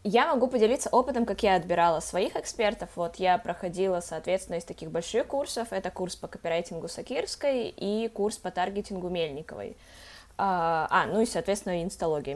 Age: 20-39